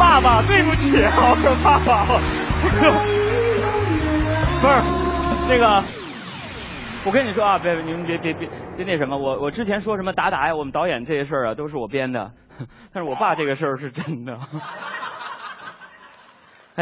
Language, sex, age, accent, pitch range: Chinese, male, 30-49, native, 120-185 Hz